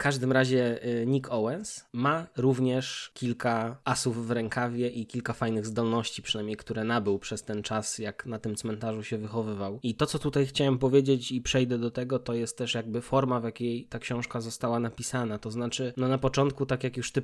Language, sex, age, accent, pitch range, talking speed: Polish, male, 20-39, native, 115-135 Hz, 200 wpm